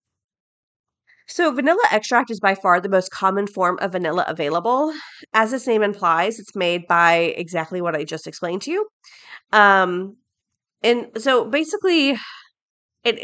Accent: American